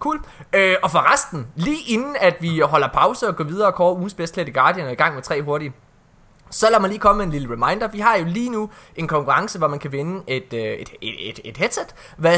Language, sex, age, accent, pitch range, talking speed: Danish, male, 20-39, native, 145-200 Hz, 245 wpm